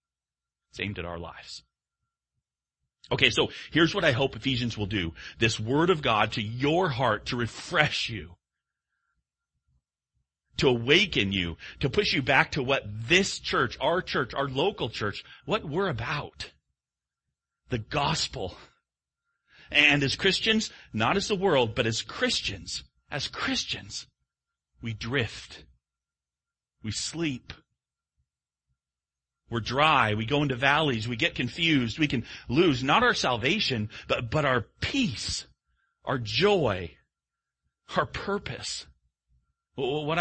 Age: 40-59